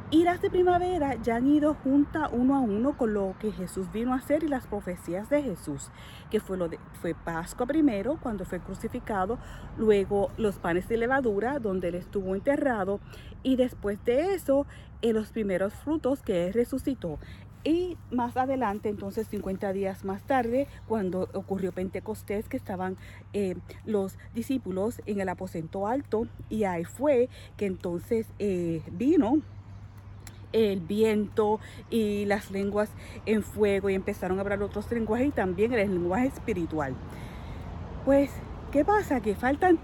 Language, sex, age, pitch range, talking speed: English, female, 40-59, 195-275 Hz, 150 wpm